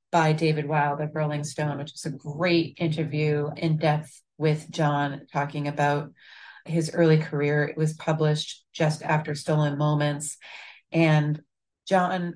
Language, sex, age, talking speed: English, female, 30-49, 140 wpm